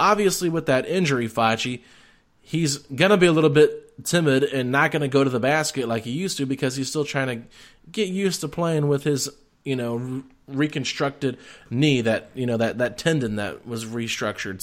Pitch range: 130-180 Hz